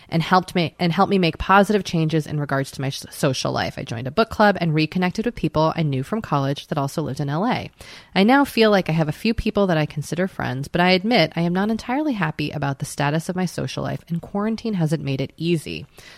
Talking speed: 250 wpm